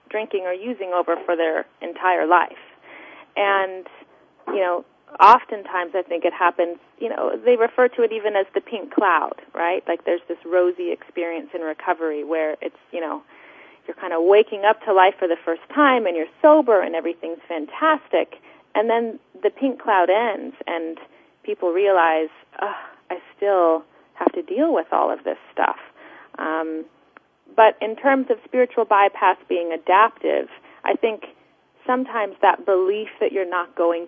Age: 30-49